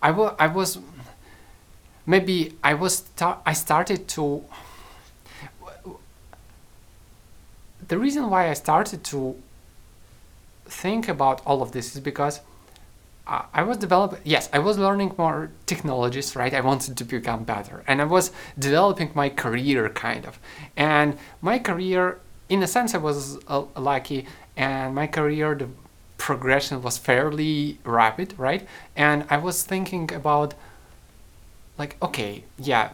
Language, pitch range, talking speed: English, 135-180 Hz, 130 wpm